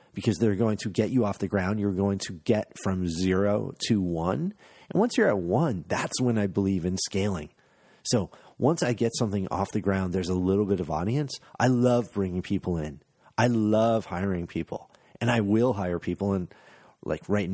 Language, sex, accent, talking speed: English, male, American, 200 wpm